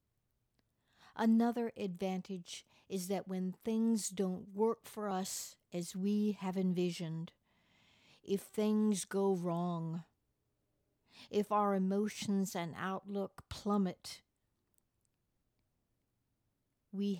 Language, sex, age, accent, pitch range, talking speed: English, female, 60-79, American, 160-200 Hz, 85 wpm